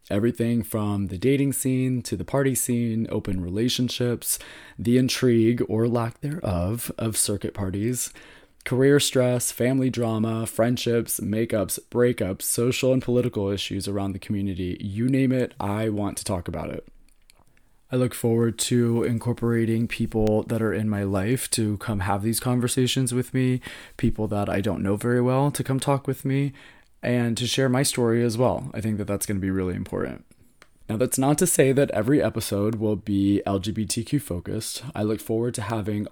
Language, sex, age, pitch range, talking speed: English, male, 20-39, 105-125 Hz, 175 wpm